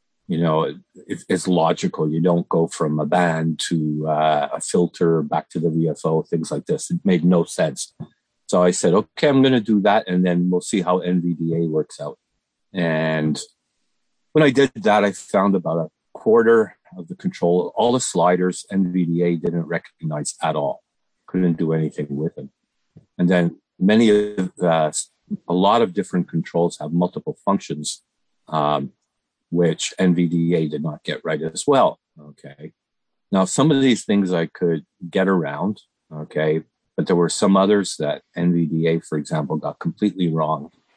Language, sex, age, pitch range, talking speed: English, male, 50-69, 80-95 Hz, 165 wpm